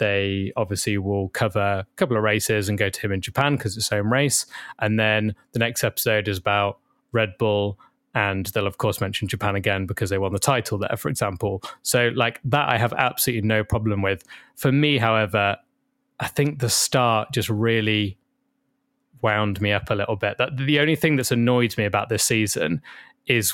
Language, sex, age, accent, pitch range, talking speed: English, male, 20-39, British, 105-130 Hz, 200 wpm